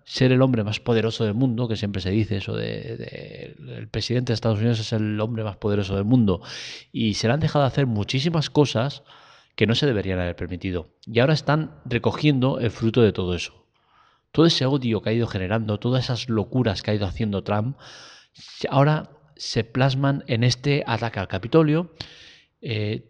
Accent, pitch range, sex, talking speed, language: Spanish, 105-135 Hz, male, 190 wpm, Spanish